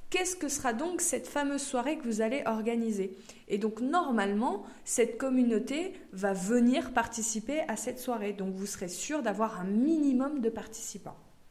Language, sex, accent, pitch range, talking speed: French, female, French, 215-290 Hz, 160 wpm